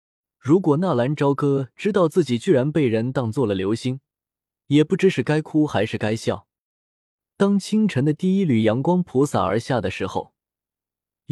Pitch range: 105-155 Hz